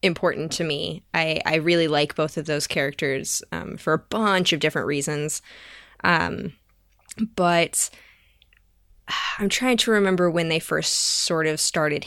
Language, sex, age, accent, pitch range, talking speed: English, female, 10-29, American, 155-205 Hz, 150 wpm